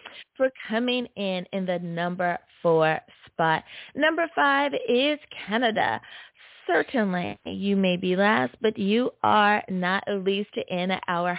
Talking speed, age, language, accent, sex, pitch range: 130 wpm, 20-39, English, American, female, 180-240 Hz